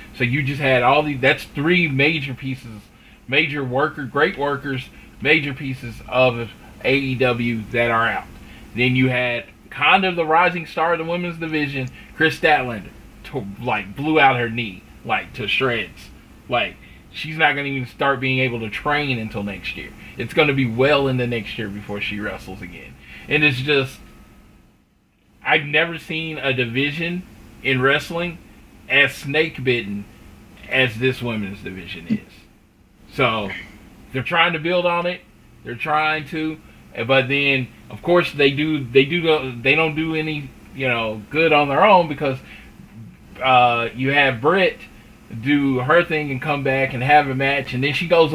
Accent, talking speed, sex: American, 165 wpm, male